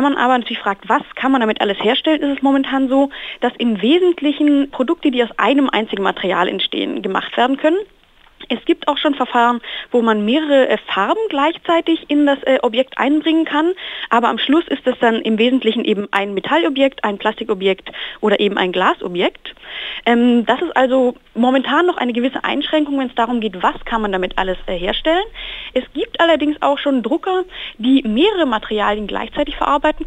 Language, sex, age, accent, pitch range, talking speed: German, female, 30-49, German, 215-300 Hz, 180 wpm